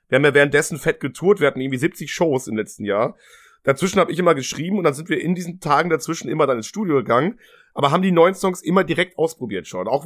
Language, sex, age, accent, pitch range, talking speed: German, male, 30-49, German, 130-165 Hz, 250 wpm